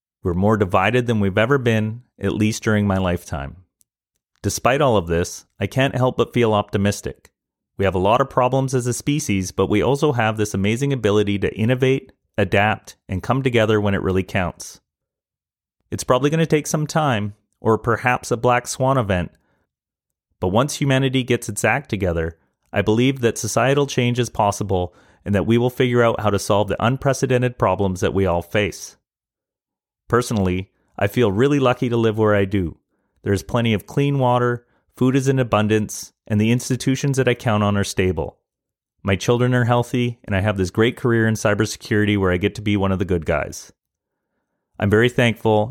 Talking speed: 190 wpm